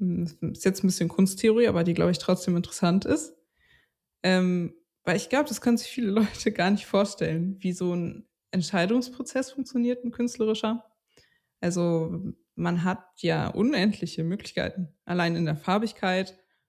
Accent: German